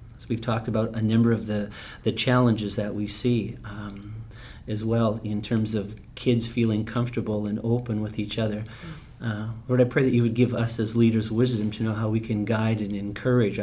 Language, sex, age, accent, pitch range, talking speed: English, male, 40-59, American, 110-125 Hz, 205 wpm